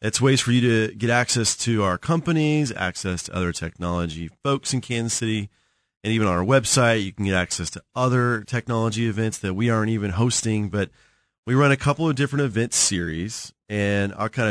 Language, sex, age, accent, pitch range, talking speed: English, male, 30-49, American, 100-120 Hz, 200 wpm